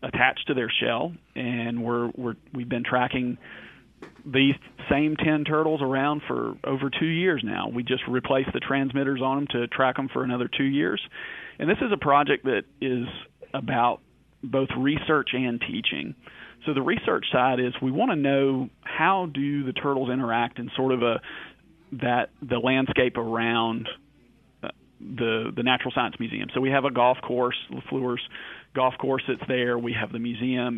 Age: 40-59